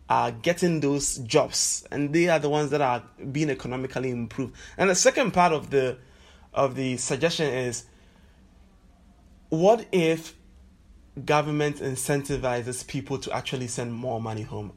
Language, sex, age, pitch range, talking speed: English, male, 20-39, 125-160 Hz, 140 wpm